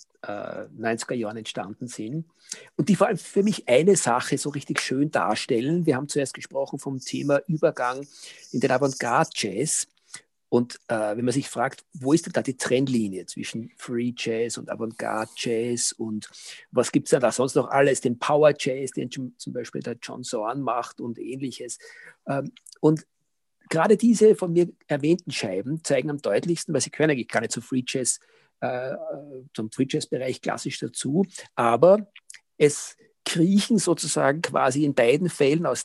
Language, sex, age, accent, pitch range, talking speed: German, male, 50-69, German, 125-175 Hz, 160 wpm